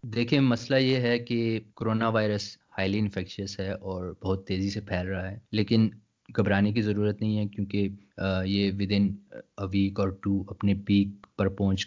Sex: male